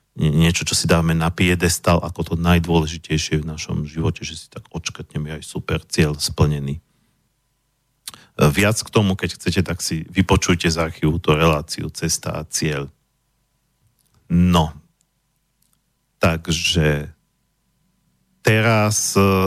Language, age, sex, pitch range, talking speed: Slovak, 40-59, male, 85-105 Hz, 115 wpm